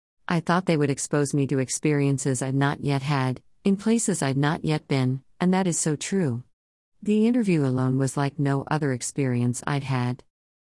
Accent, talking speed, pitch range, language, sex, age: American, 185 wpm, 130-170 Hz, English, female, 50-69